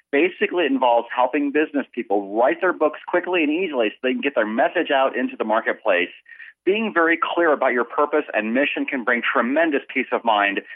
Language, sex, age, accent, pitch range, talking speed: English, male, 40-59, American, 125-210 Hz, 200 wpm